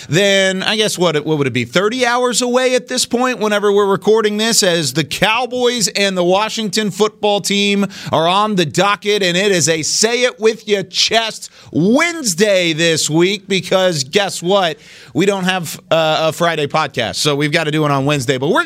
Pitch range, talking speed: 140-185 Hz, 185 wpm